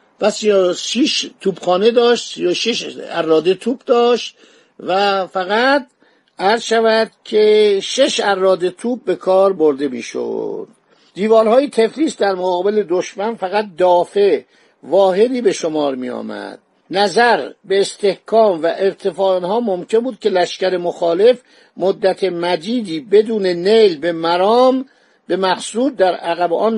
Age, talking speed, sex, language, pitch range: 50-69, 125 wpm, male, Persian, 170-220 Hz